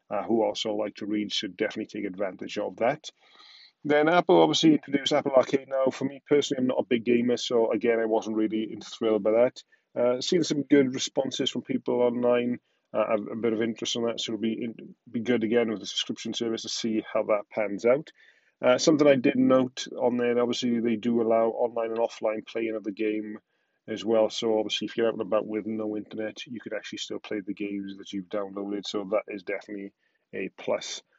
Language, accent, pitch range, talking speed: English, British, 110-135 Hz, 220 wpm